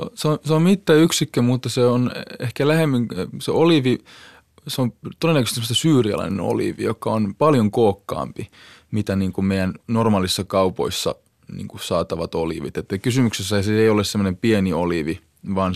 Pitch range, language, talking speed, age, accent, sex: 90-115 Hz, Finnish, 150 wpm, 20-39, native, male